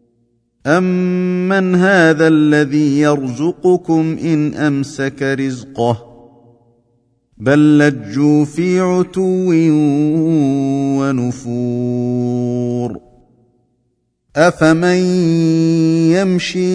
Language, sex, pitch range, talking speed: Arabic, male, 125-160 Hz, 50 wpm